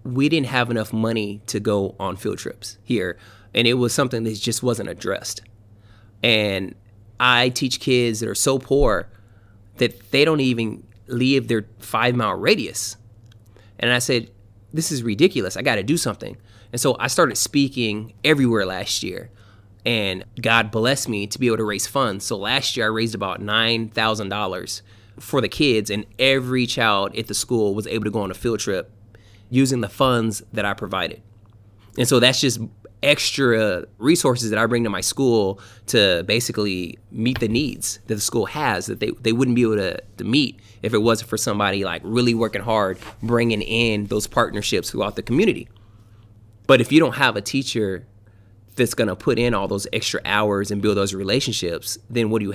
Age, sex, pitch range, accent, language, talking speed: 20-39, male, 105-120 Hz, American, English, 185 wpm